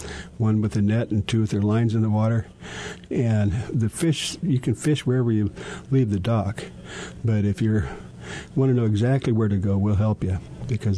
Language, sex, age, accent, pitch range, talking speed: English, male, 60-79, American, 100-125 Hz, 200 wpm